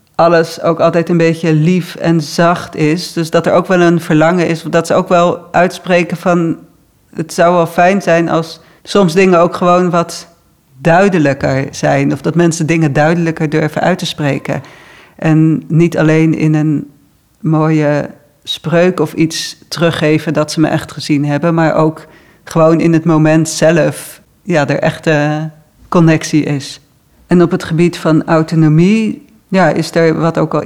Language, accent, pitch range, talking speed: Dutch, Dutch, 155-175 Hz, 165 wpm